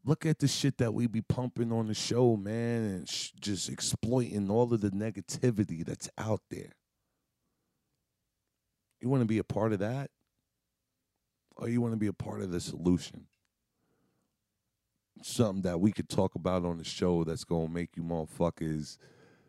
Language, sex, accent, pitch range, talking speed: English, male, American, 85-110 Hz, 170 wpm